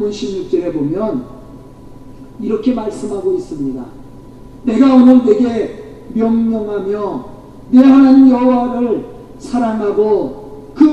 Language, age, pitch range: Korean, 40-59, 215-275 Hz